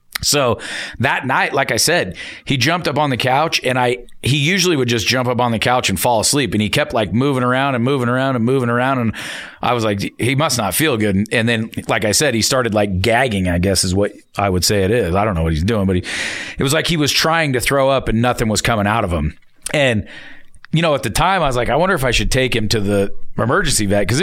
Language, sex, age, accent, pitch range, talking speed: English, male, 40-59, American, 110-135 Hz, 270 wpm